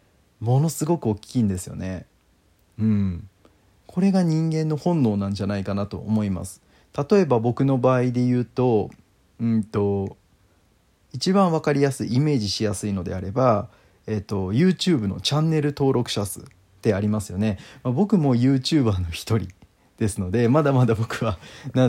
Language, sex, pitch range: Japanese, male, 100-130 Hz